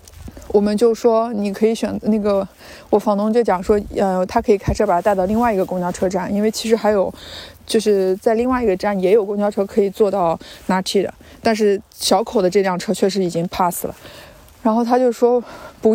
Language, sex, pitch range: Chinese, female, 190-235 Hz